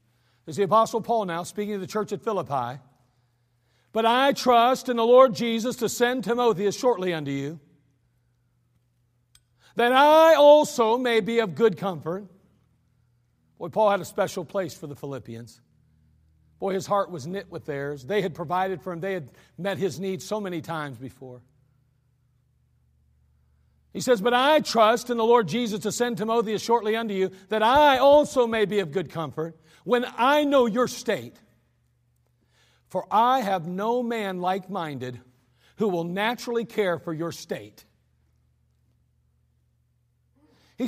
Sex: male